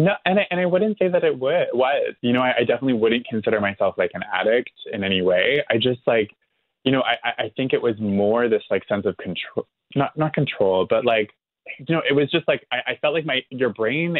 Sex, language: male, English